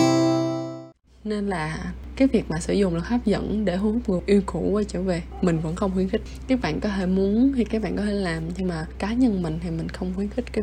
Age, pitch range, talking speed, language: 20-39, 185-225 Hz, 255 wpm, Vietnamese